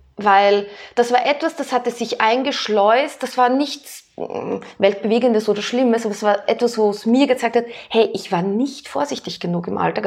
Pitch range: 205-245 Hz